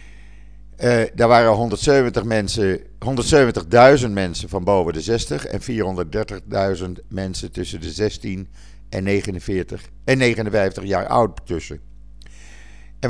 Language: Dutch